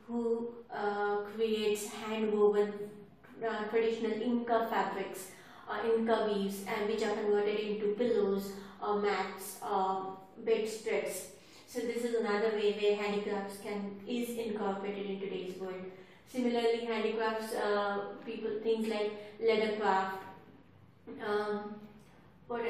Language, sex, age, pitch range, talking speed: English, female, 30-49, 200-225 Hz, 120 wpm